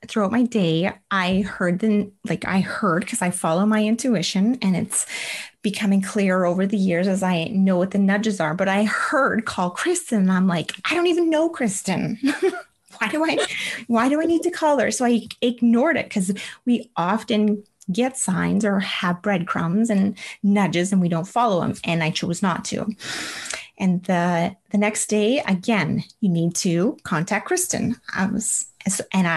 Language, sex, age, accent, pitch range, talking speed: English, female, 30-49, American, 185-235 Hz, 180 wpm